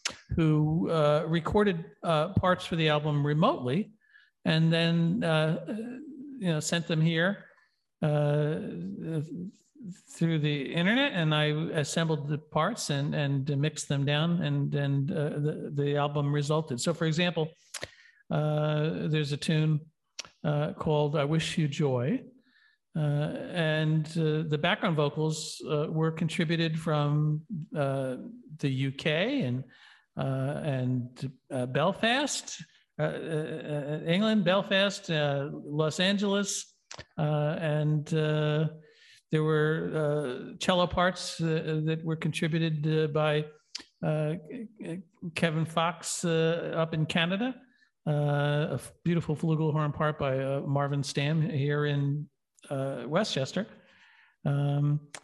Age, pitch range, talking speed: 50-69, 150-175 Hz, 120 wpm